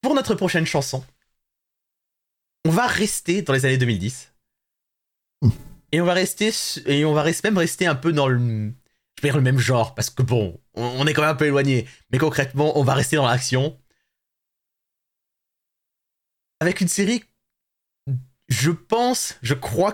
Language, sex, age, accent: French, male, 30-49, French